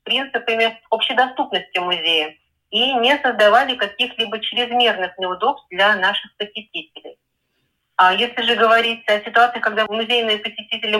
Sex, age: female, 30-49